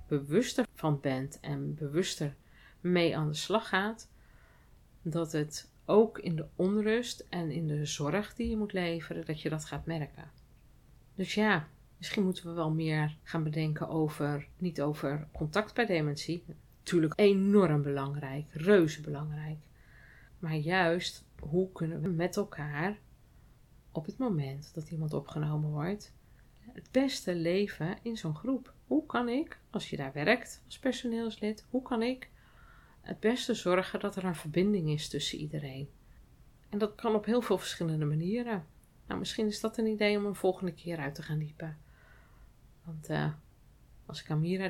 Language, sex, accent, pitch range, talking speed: Dutch, female, Dutch, 150-205 Hz, 160 wpm